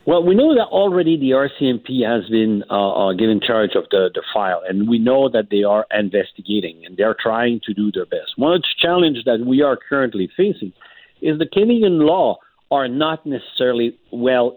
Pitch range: 110-155 Hz